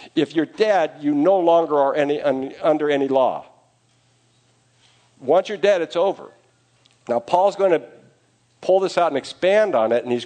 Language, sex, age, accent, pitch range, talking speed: English, male, 50-69, American, 120-180 Hz, 175 wpm